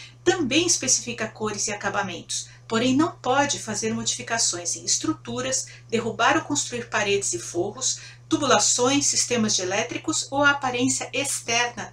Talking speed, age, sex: 130 wpm, 50-69, female